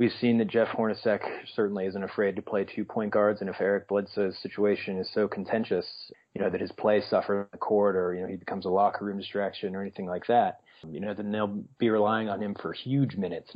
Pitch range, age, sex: 95-110 Hz, 30-49, male